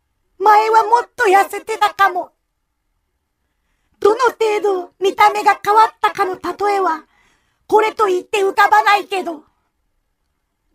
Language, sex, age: Japanese, female, 40-59